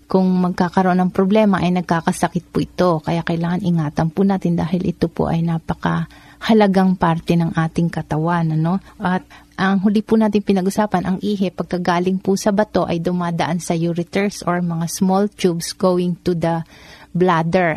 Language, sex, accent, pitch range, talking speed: Filipino, female, native, 170-195 Hz, 160 wpm